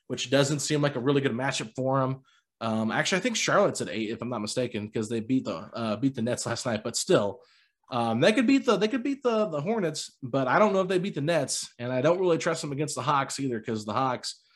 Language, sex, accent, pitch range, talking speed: English, male, American, 115-145 Hz, 270 wpm